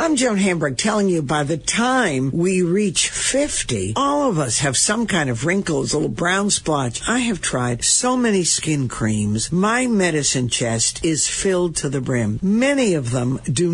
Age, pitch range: 60-79, 145-200 Hz